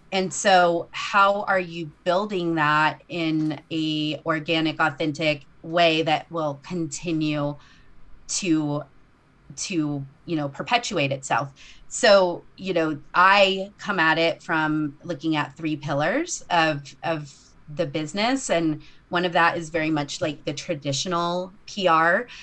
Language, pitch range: English, 155-175 Hz